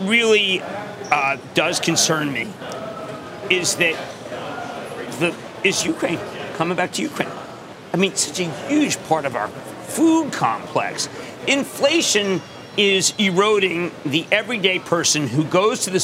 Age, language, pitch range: 40-59, English, 175-245 Hz